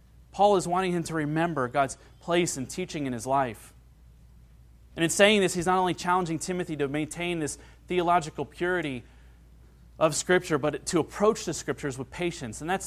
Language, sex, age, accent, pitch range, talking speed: English, male, 30-49, American, 115-180 Hz, 175 wpm